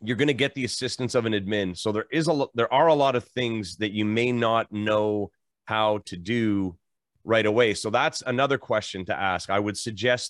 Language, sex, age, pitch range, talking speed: English, male, 30-49, 100-125 Hz, 215 wpm